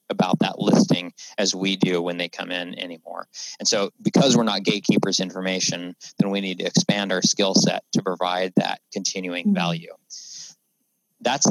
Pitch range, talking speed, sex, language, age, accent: 90-115 Hz, 165 wpm, male, English, 30-49, American